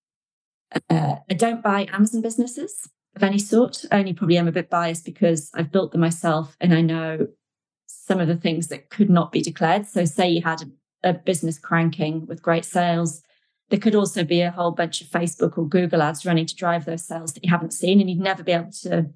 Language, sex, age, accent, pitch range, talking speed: English, female, 20-39, British, 165-190 Hz, 220 wpm